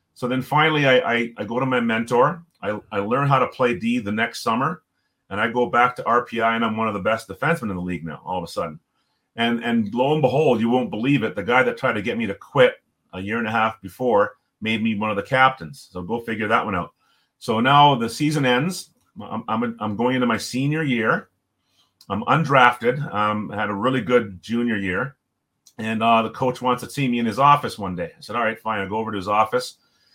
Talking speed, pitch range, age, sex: 250 wpm, 105-130 Hz, 40-59, male